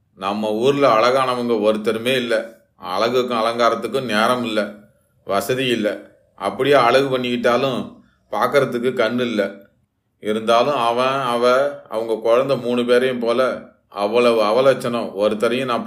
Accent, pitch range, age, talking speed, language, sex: native, 110-125 Hz, 30-49, 105 wpm, Tamil, male